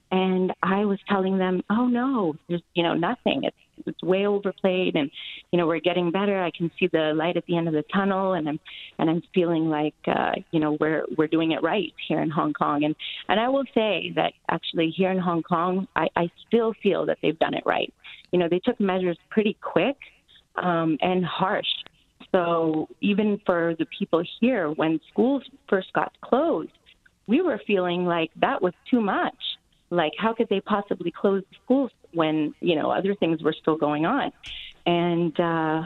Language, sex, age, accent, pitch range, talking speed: English, female, 30-49, American, 165-200 Hz, 195 wpm